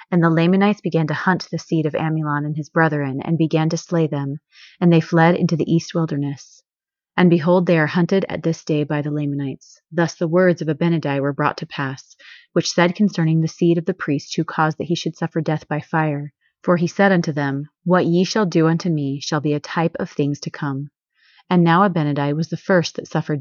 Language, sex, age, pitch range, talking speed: English, female, 30-49, 150-175 Hz, 230 wpm